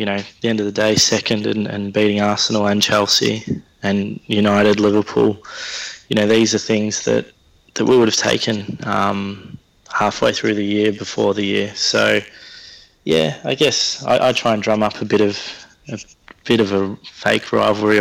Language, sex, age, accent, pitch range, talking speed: English, male, 20-39, Australian, 100-110 Hz, 185 wpm